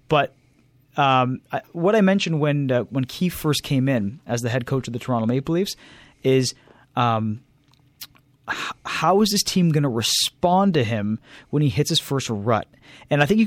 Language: English